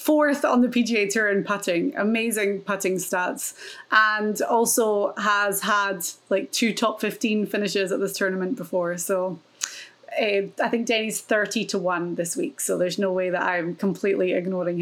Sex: female